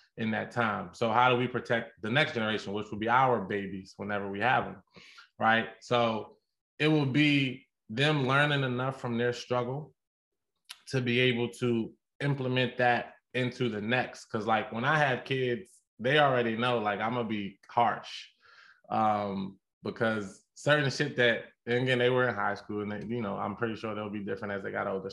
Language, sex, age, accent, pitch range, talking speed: English, male, 20-39, American, 110-125 Hz, 190 wpm